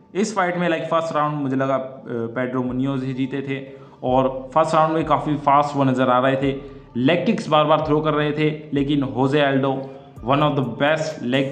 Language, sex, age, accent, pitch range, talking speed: Hindi, male, 20-39, native, 130-155 Hz, 210 wpm